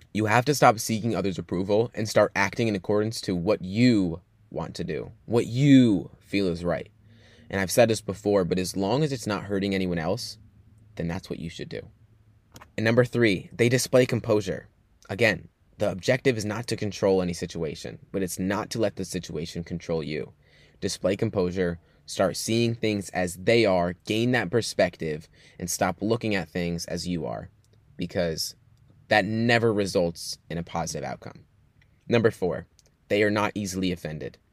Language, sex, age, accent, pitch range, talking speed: English, male, 20-39, American, 90-110 Hz, 175 wpm